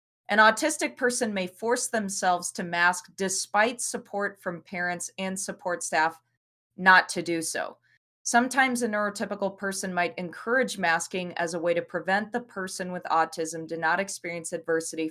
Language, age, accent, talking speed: English, 20-39, American, 155 wpm